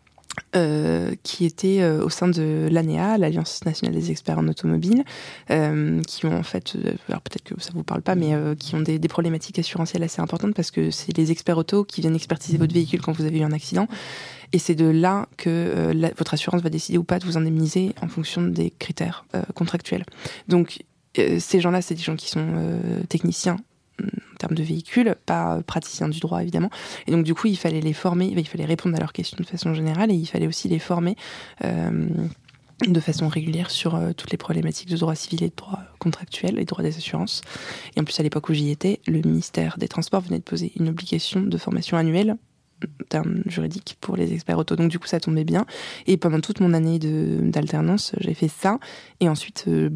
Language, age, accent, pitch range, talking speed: French, 20-39, French, 155-175 Hz, 220 wpm